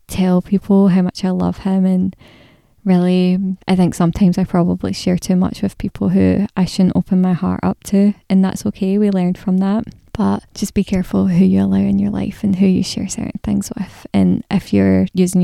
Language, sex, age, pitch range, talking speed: English, female, 10-29, 175-195 Hz, 215 wpm